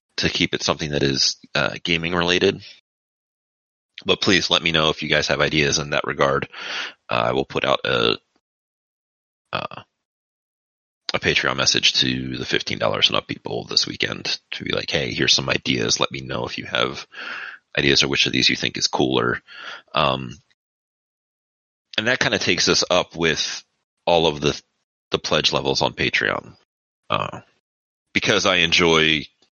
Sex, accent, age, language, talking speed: male, American, 30-49, English, 170 wpm